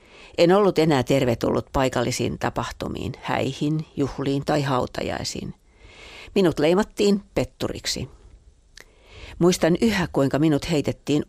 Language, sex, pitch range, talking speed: Finnish, female, 120-155 Hz, 95 wpm